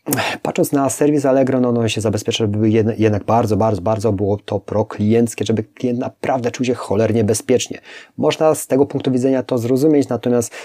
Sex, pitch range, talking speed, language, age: male, 105-130 Hz, 175 wpm, Polish, 30-49